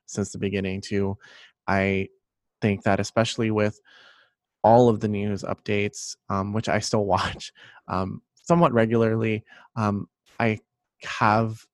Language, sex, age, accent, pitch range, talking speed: English, male, 20-39, American, 100-115 Hz, 130 wpm